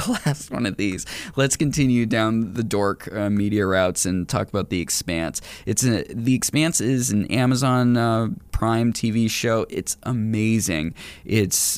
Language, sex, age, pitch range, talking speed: English, male, 20-39, 100-120 Hz, 165 wpm